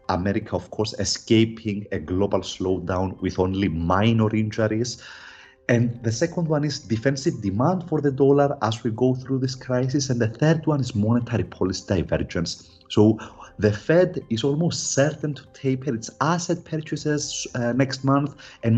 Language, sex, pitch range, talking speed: English, male, 105-150 Hz, 160 wpm